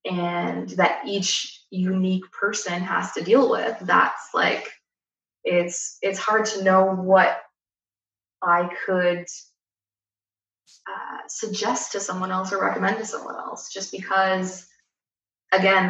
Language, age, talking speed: English, 20-39, 120 wpm